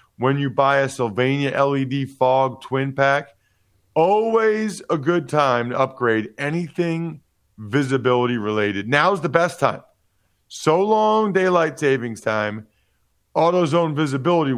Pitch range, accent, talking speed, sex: 110-150 Hz, American, 120 wpm, male